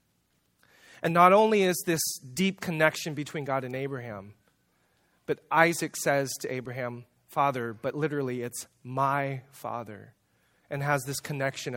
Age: 30-49